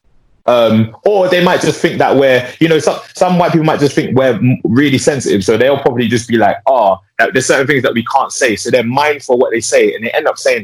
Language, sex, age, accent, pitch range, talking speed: English, male, 20-39, British, 110-160 Hz, 265 wpm